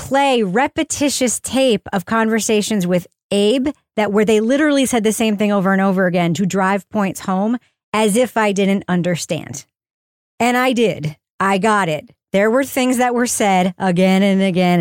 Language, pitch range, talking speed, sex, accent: English, 175-225 Hz, 175 wpm, female, American